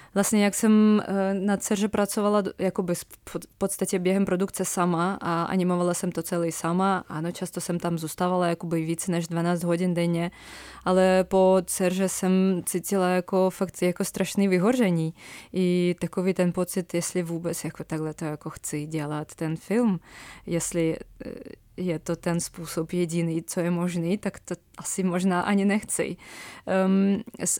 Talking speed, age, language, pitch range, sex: 150 wpm, 20-39, Czech, 170-195 Hz, female